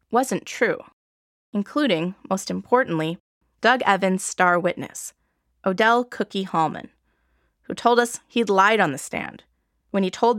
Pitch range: 165-230 Hz